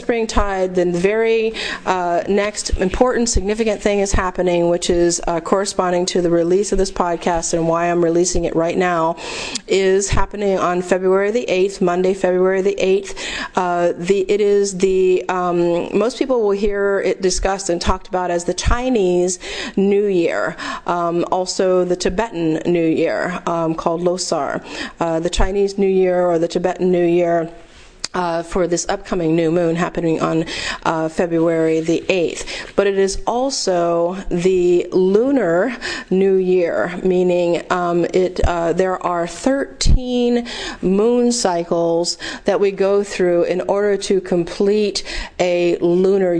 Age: 30-49